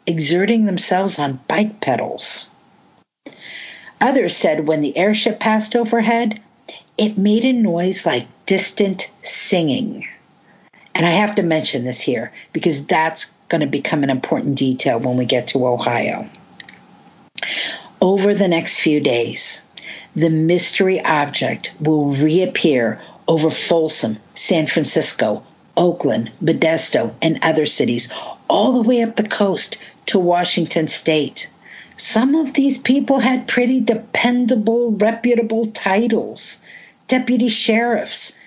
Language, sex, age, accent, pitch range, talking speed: English, female, 50-69, American, 160-225 Hz, 120 wpm